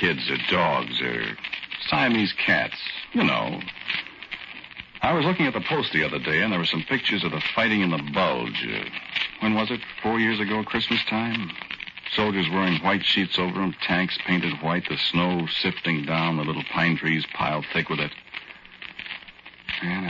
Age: 60-79